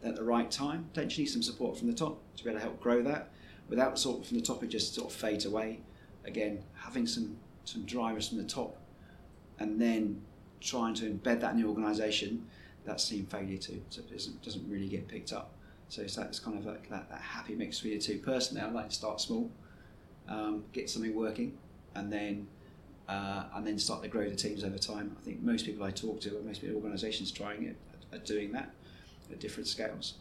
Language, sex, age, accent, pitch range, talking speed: English, male, 30-49, British, 105-125 Hz, 215 wpm